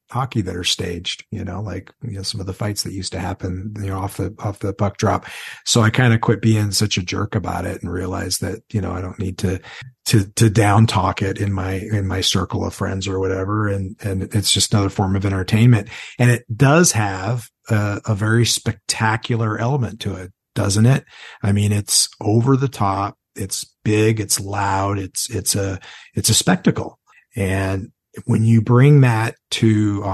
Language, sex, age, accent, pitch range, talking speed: English, male, 50-69, American, 95-115 Hz, 205 wpm